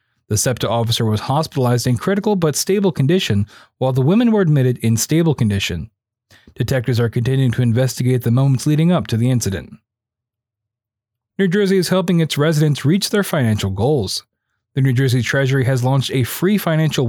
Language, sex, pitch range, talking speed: English, male, 115-160 Hz, 170 wpm